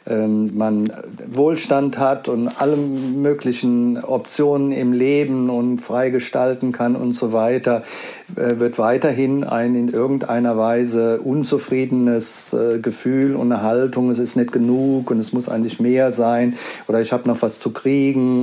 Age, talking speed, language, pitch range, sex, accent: 50-69, 145 wpm, German, 115-140 Hz, male, German